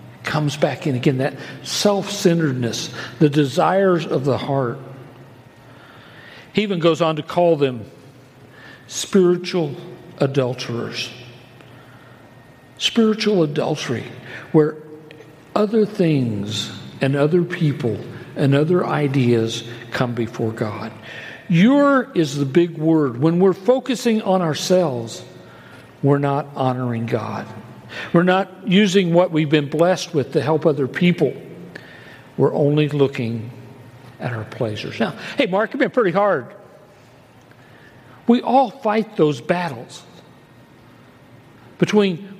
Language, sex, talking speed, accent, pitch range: English, male, 115 wpm, American, 125-180 Hz